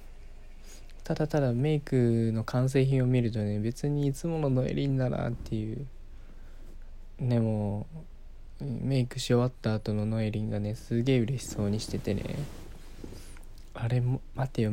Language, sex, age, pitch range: Japanese, male, 20-39, 105-130 Hz